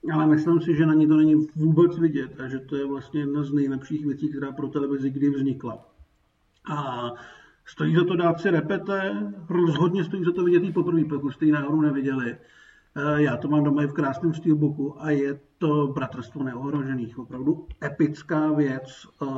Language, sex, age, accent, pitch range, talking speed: Czech, male, 50-69, native, 130-155 Hz, 185 wpm